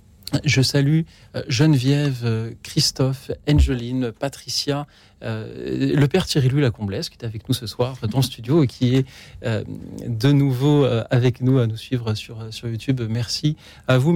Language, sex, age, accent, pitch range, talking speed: French, male, 40-59, French, 115-145 Hz, 155 wpm